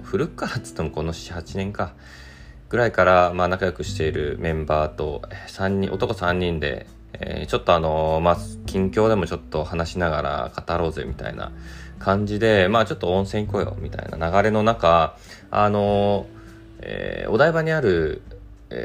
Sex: male